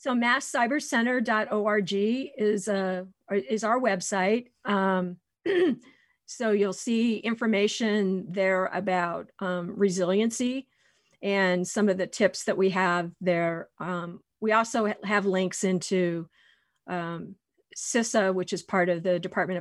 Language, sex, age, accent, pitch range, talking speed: English, female, 50-69, American, 180-210 Hz, 120 wpm